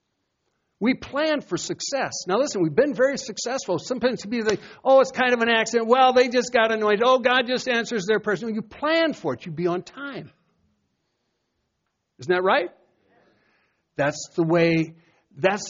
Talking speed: 175 wpm